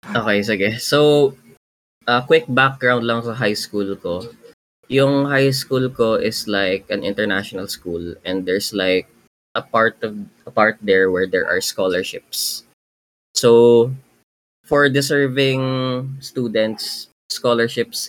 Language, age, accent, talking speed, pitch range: Filipino, 20-39, native, 130 wpm, 100-120 Hz